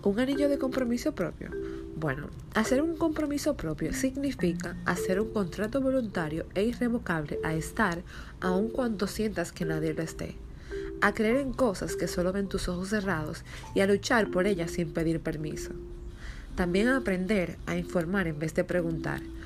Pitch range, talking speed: 160-210 Hz, 165 wpm